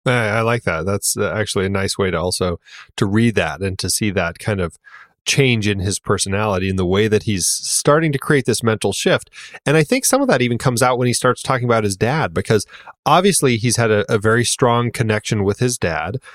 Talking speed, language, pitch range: 230 wpm, English, 95-120 Hz